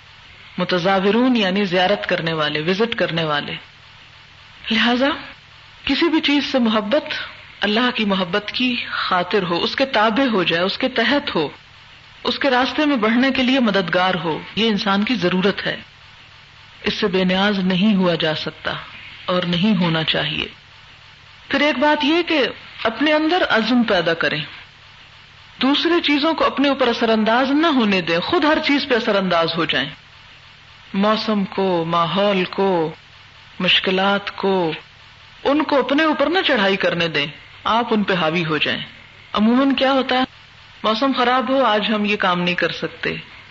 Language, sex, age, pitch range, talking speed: Urdu, female, 50-69, 165-230 Hz, 160 wpm